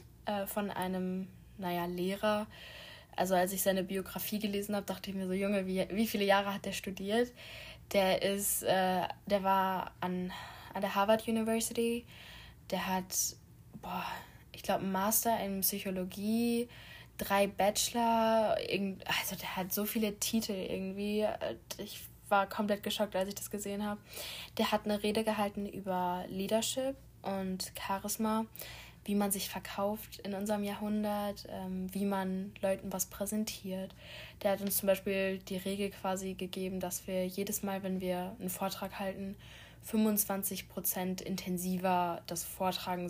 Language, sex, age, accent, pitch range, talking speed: German, female, 10-29, German, 185-205 Hz, 145 wpm